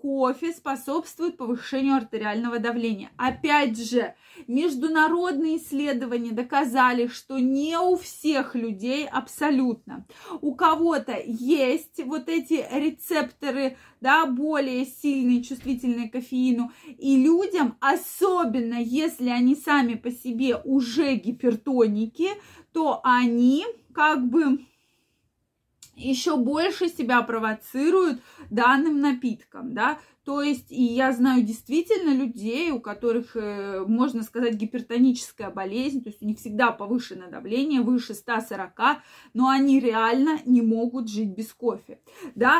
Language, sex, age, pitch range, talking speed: Russian, female, 20-39, 240-300 Hz, 110 wpm